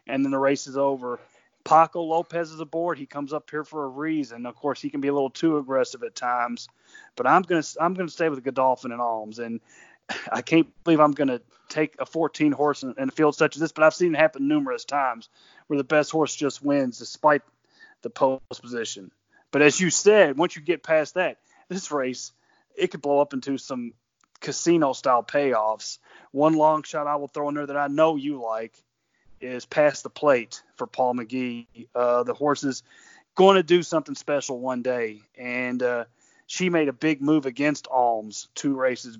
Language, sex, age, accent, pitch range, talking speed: English, male, 30-49, American, 130-155 Hz, 205 wpm